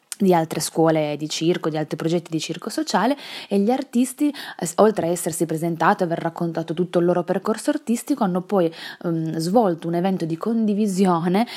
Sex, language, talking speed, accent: female, Italian, 175 wpm, native